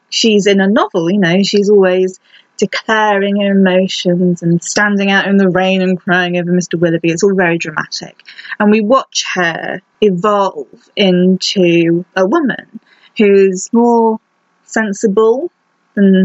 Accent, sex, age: British, female, 20-39